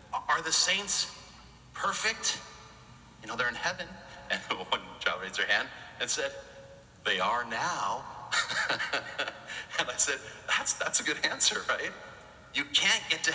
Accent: American